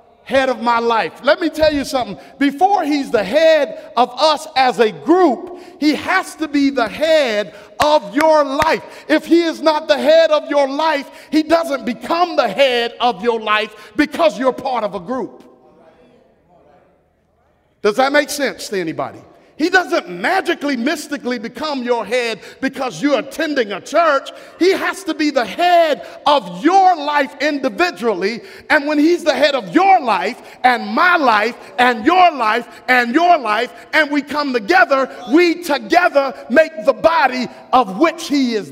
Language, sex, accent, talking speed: English, male, American, 165 wpm